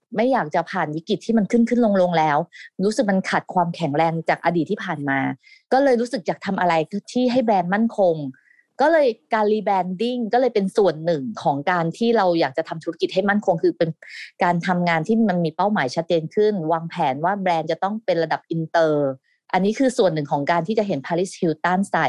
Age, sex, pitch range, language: 30-49, female, 165-220 Hz, Thai